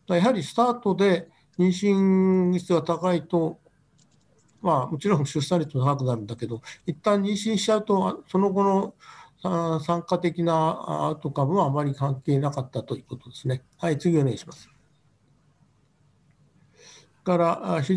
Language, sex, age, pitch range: Japanese, male, 60-79, 150-180 Hz